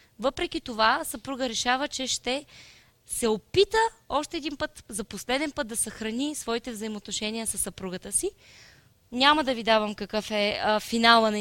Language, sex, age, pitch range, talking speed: Bulgarian, female, 20-39, 215-290 Hz, 155 wpm